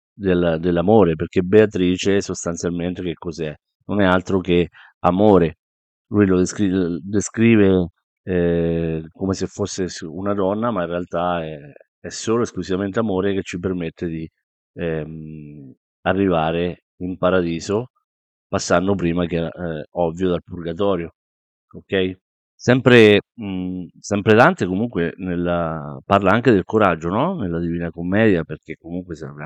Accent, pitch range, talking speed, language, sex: native, 85-100 Hz, 125 wpm, Italian, male